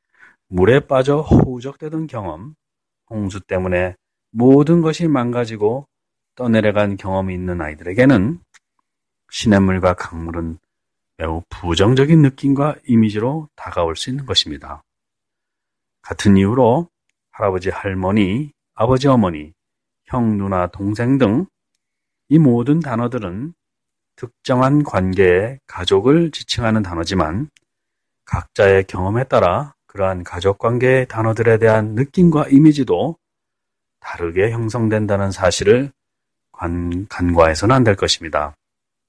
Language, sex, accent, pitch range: Korean, male, native, 95-135 Hz